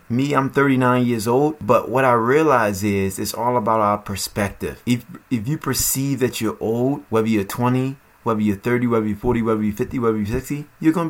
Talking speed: 210 wpm